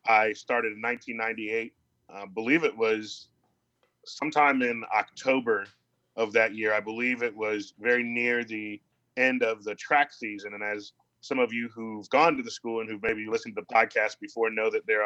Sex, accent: male, American